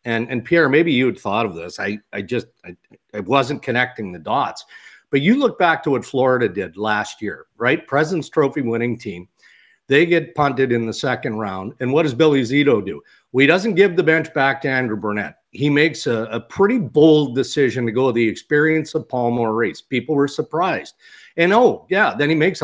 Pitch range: 125-165 Hz